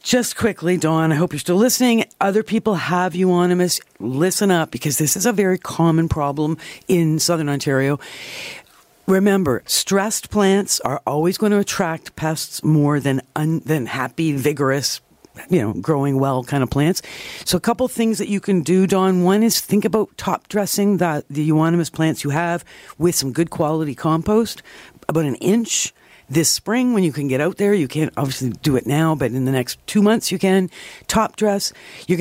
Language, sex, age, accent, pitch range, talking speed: English, female, 50-69, American, 145-195 Hz, 185 wpm